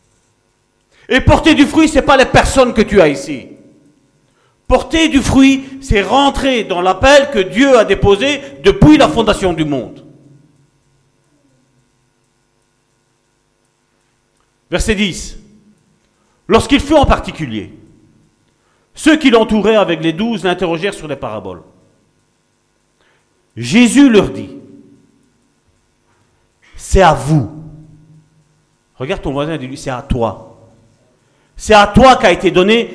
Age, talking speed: 50-69, 120 wpm